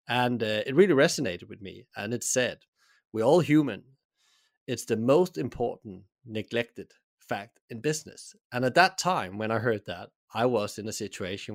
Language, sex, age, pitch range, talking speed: English, male, 30-49, 110-150 Hz, 175 wpm